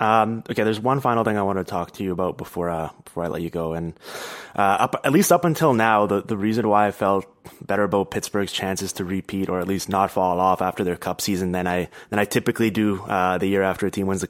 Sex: male